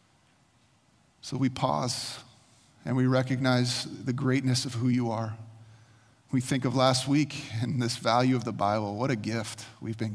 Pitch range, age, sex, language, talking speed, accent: 115-155 Hz, 30-49, male, English, 165 wpm, American